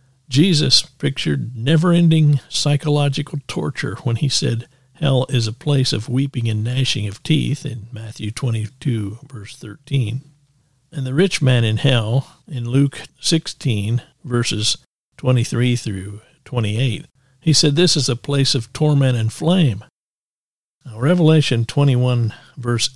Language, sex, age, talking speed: English, male, 50-69, 130 wpm